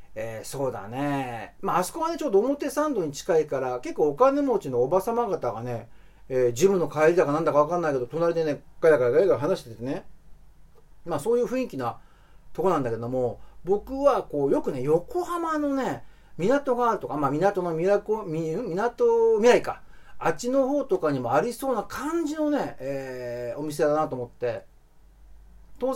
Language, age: Japanese, 40-59